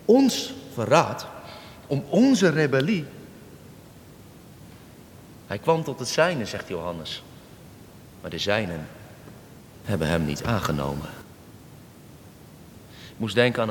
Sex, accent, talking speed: male, Dutch, 100 wpm